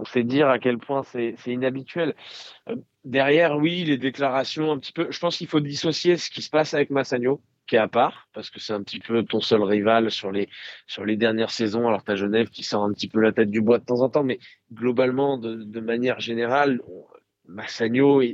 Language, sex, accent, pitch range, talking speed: French, male, French, 115-140 Hz, 230 wpm